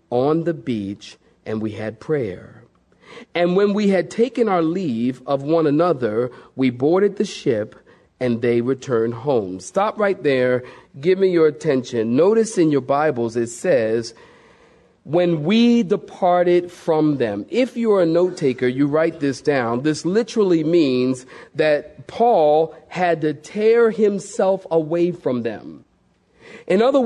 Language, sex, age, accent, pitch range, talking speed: English, male, 40-59, American, 145-205 Hz, 150 wpm